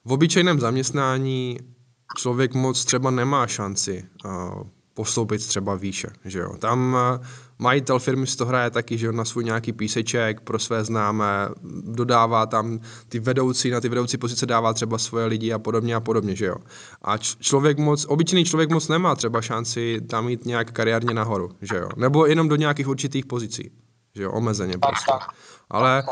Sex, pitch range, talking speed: male, 110-130 Hz, 170 wpm